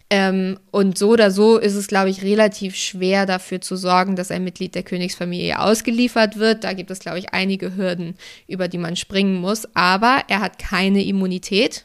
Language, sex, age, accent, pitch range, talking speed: German, female, 20-39, German, 185-215 Hz, 185 wpm